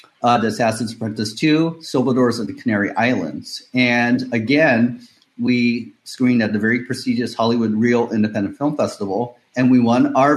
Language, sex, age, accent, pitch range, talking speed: English, male, 30-49, American, 120-160 Hz, 160 wpm